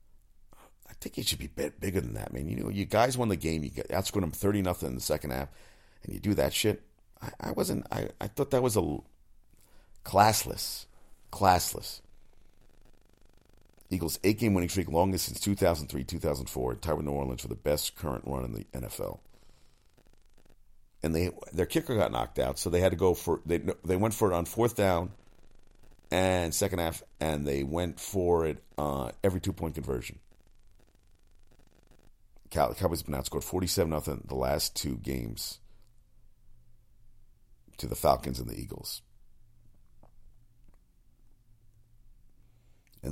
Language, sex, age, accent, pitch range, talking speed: English, male, 50-69, American, 70-100 Hz, 170 wpm